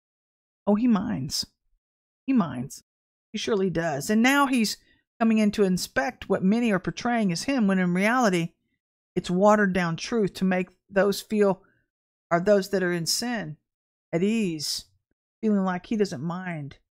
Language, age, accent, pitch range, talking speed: English, 50-69, American, 160-210 Hz, 160 wpm